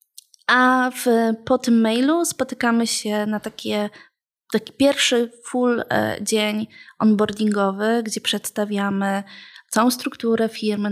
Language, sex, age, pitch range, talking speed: Polish, female, 20-39, 205-230 Hz, 105 wpm